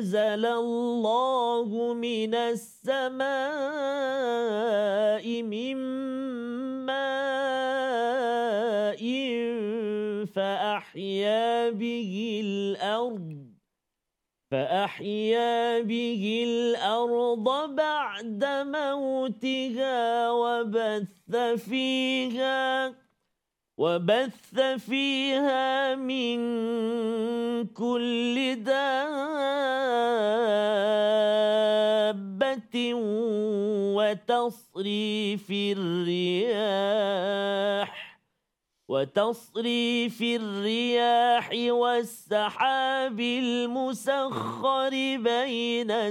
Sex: male